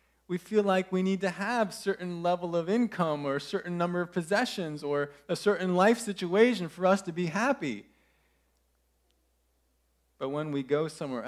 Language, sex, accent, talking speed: English, male, American, 175 wpm